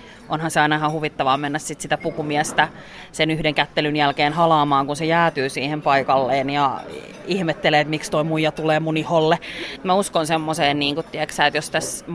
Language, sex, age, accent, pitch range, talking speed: Finnish, female, 30-49, native, 145-175 Hz, 170 wpm